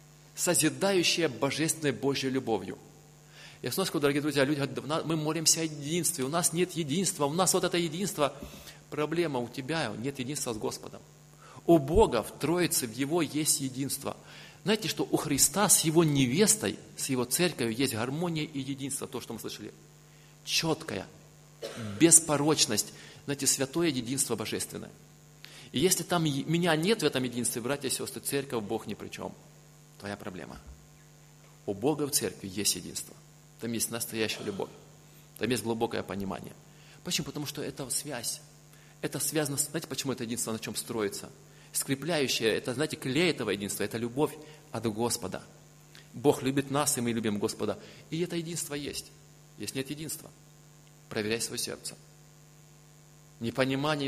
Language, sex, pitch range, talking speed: Russian, male, 130-155 Hz, 155 wpm